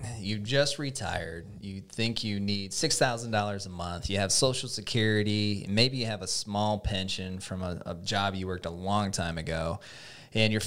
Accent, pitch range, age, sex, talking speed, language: American, 100-130 Hz, 20-39, male, 180 wpm, English